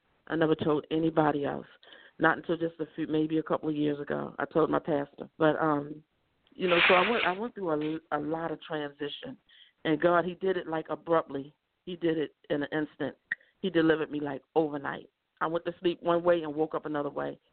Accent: American